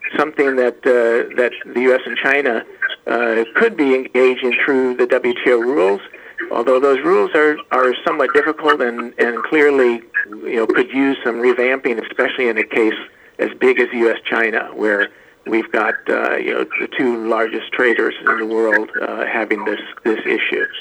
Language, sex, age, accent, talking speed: English, male, 50-69, American, 165 wpm